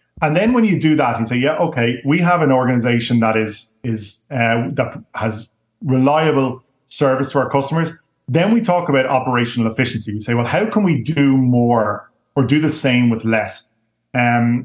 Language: English